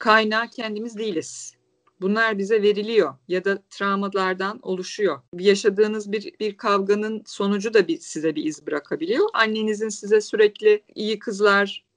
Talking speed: 130 wpm